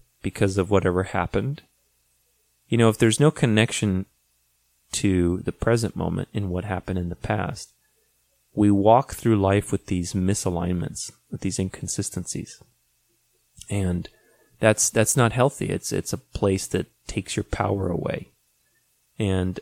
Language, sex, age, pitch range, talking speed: English, male, 30-49, 90-110 Hz, 140 wpm